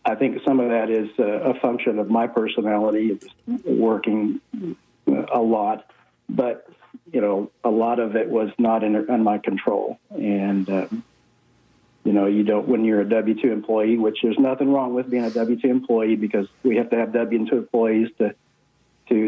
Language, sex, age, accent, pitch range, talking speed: English, male, 50-69, American, 105-115 Hz, 190 wpm